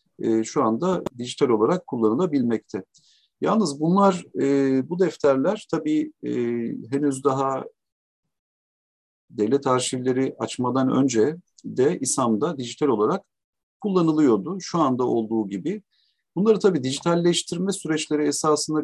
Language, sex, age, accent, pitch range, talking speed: Turkish, male, 50-69, native, 120-175 Hz, 95 wpm